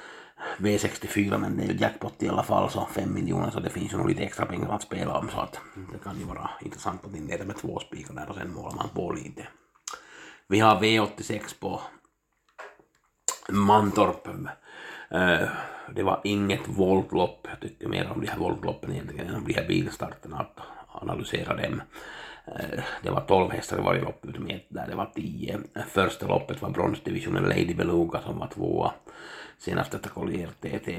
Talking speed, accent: 165 wpm, Finnish